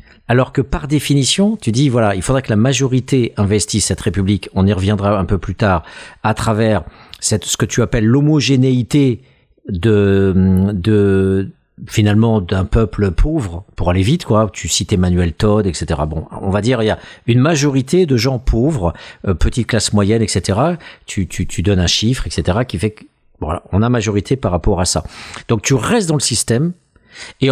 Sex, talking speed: male, 190 wpm